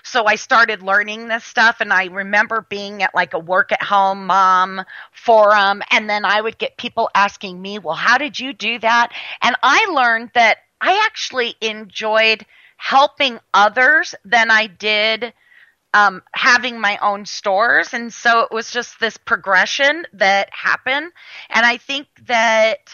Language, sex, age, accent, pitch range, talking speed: English, female, 30-49, American, 205-245 Hz, 160 wpm